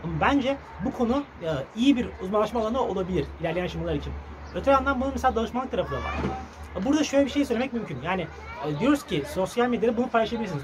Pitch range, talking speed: 170-225 Hz, 180 wpm